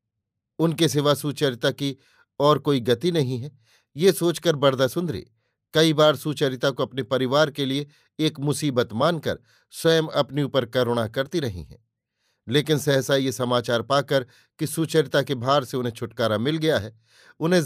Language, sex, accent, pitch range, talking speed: Hindi, male, native, 125-160 Hz, 155 wpm